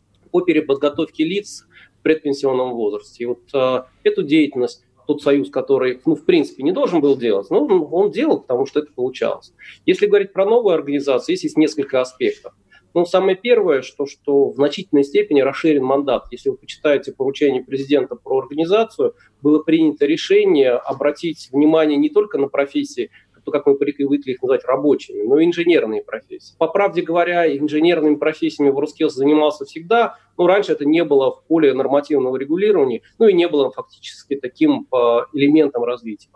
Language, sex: Russian, male